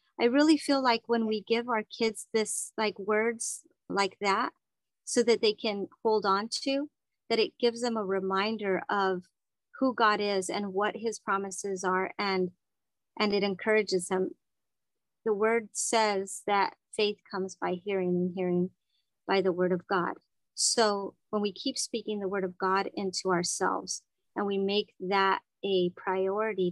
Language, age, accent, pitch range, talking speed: English, 40-59, American, 195-220 Hz, 165 wpm